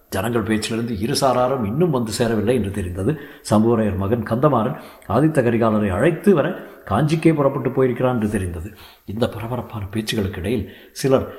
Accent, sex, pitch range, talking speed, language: native, male, 105-135 Hz, 130 wpm, Tamil